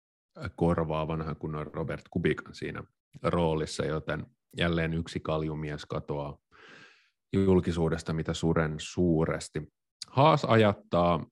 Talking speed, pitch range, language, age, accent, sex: 90 wpm, 80-95 Hz, Finnish, 30-49, native, male